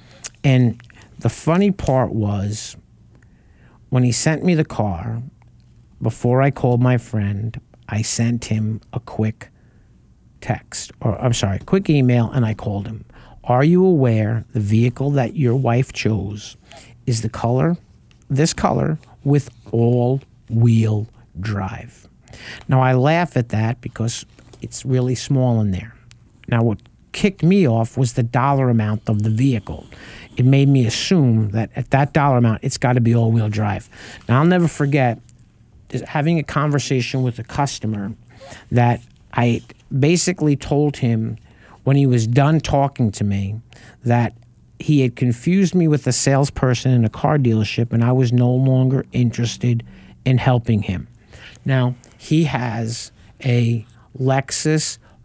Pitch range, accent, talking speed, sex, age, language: 110-135 Hz, American, 145 wpm, male, 50-69, English